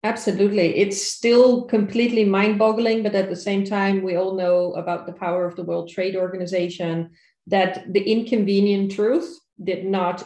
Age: 30-49